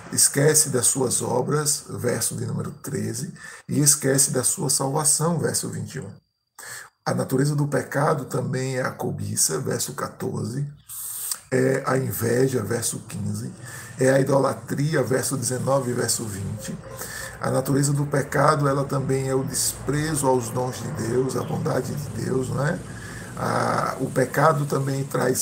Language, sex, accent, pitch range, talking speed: Portuguese, male, Brazilian, 125-145 Hz, 145 wpm